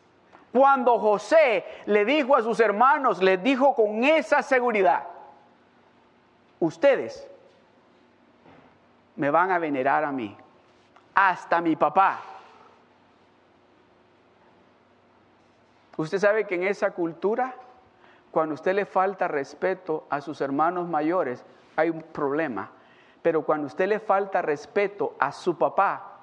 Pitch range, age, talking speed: 155-230 Hz, 50-69, 115 wpm